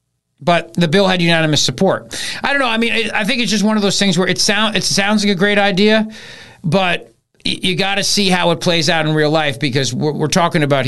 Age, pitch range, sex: 40-59, 145-200 Hz, male